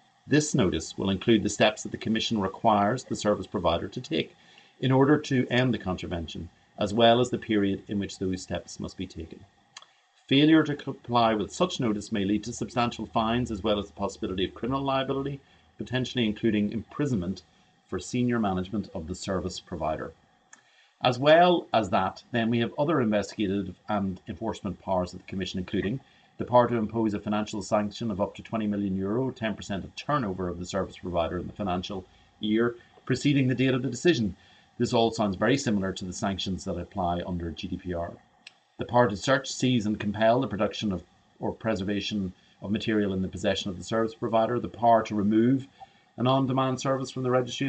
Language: English